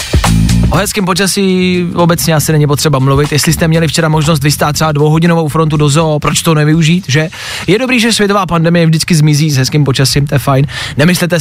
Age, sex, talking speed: 20-39, male, 195 wpm